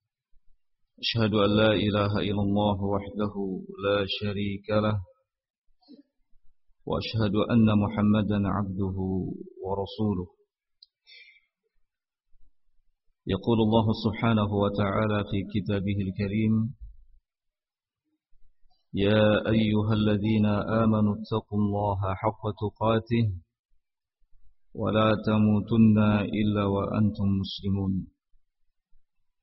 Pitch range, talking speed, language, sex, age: 100-115 Hz, 70 wpm, Indonesian, male, 50-69